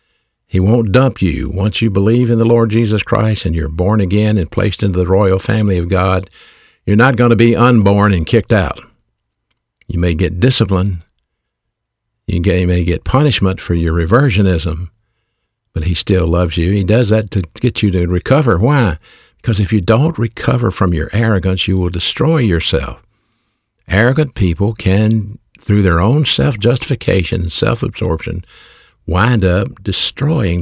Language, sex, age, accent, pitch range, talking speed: English, male, 60-79, American, 90-115 Hz, 160 wpm